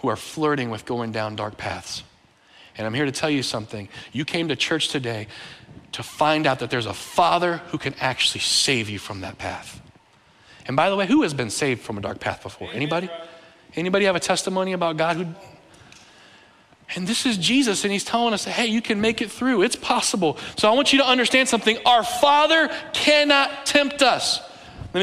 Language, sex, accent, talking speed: English, male, American, 205 wpm